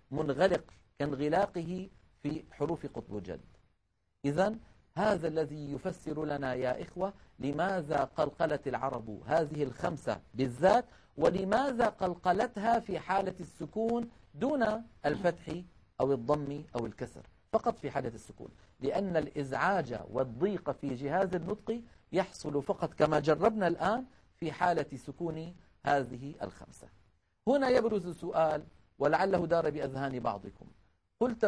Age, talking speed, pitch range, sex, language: 50-69, 110 wpm, 145-195 Hz, male, Arabic